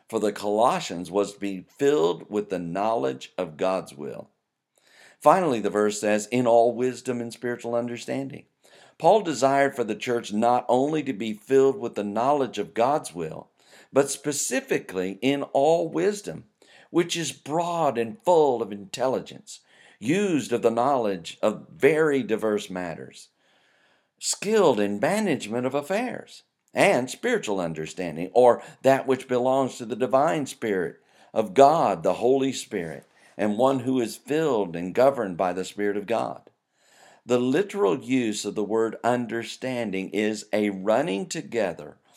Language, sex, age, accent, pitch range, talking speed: English, male, 50-69, American, 100-130 Hz, 145 wpm